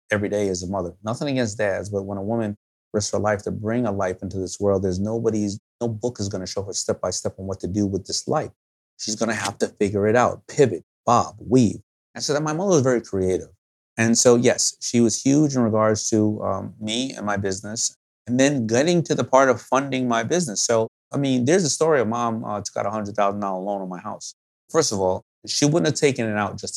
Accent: American